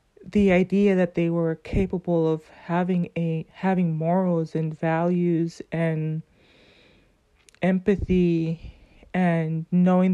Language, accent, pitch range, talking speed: English, American, 170-205 Hz, 100 wpm